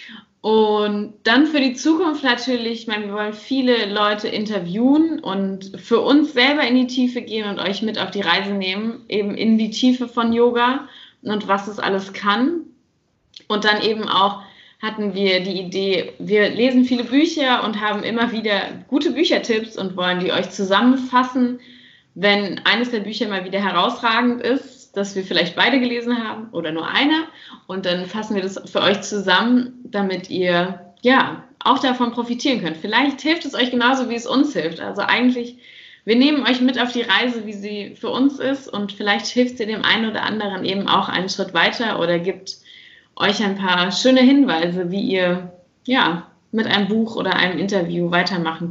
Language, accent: German, German